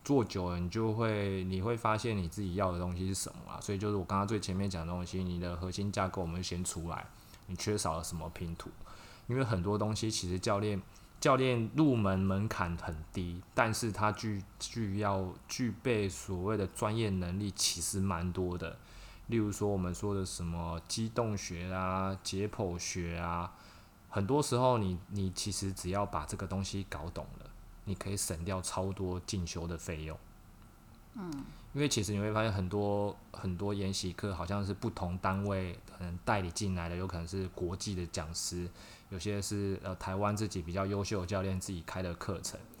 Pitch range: 90-105 Hz